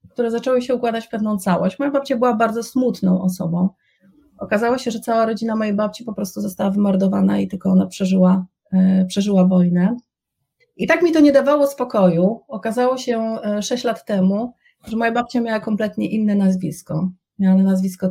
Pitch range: 190-245 Hz